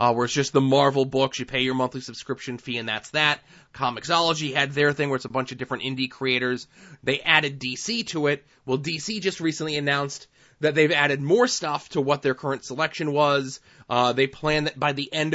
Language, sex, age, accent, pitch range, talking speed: English, male, 20-39, American, 130-155 Hz, 220 wpm